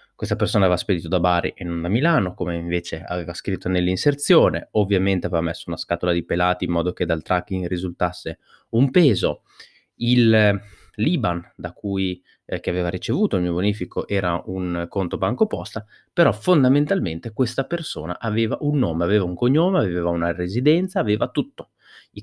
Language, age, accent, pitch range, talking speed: Italian, 20-39, native, 85-110 Hz, 165 wpm